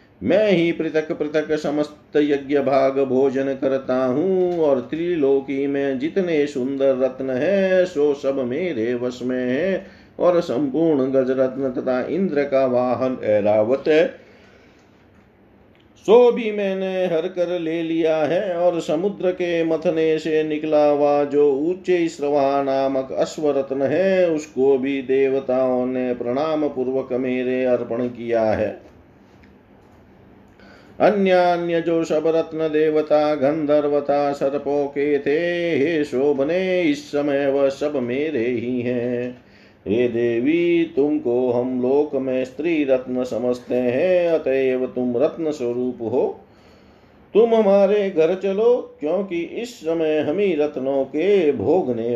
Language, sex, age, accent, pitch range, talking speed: Hindi, male, 50-69, native, 130-175 Hz, 120 wpm